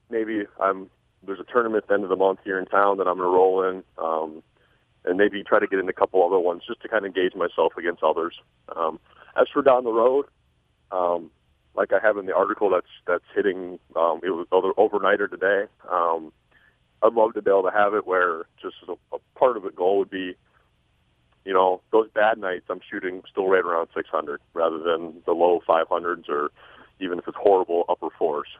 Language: English